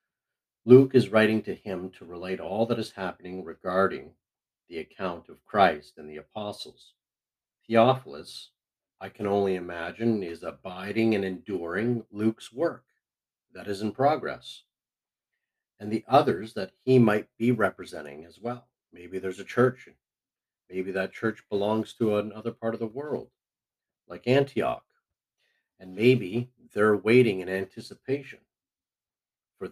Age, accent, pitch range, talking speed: 50-69, American, 100-125 Hz, 135 wpm